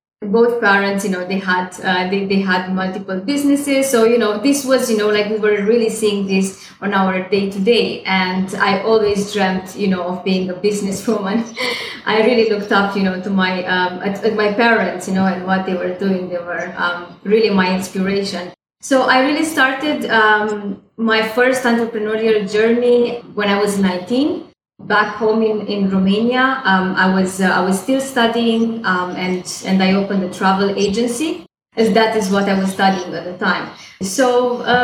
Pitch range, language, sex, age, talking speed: 190-225 Hz, English, female, 20-39, 195 wpm